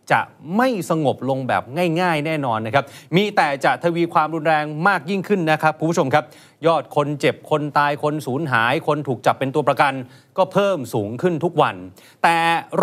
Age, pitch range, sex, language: 30-49, 130-175 Hz, male, Thai